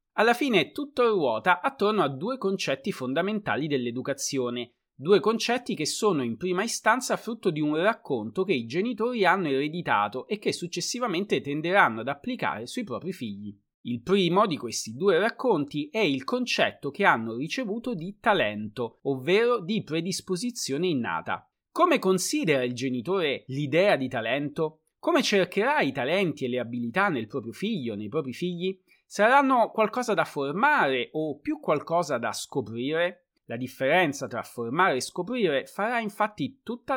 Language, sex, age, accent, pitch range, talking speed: Italian, male, 30-49, native, 140-220 Hz, 150 wpm